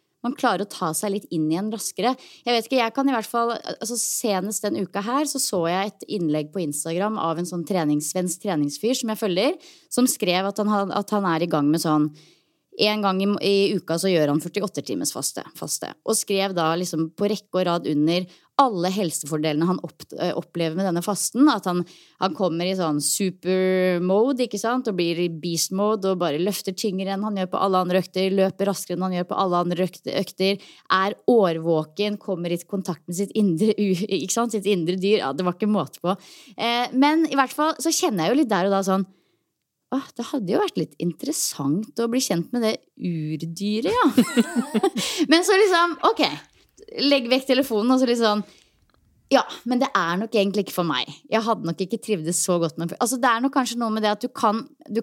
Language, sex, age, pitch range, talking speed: English, female, 20-39, 180-235 Hz, 215 wpm